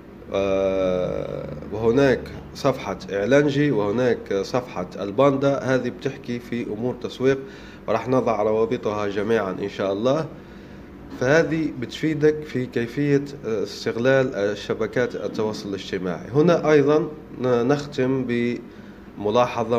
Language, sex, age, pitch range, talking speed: Arabic, male, 30-49, 115-140 Hz, 90 wpm